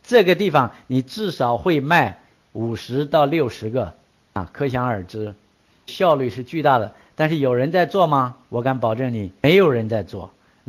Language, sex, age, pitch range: Chinese, male, 50-69, 135-195 Hz